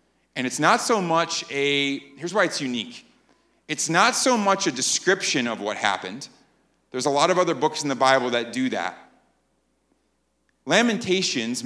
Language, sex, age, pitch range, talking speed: English, male, 30-49, 125-175 Hz, 165 wpm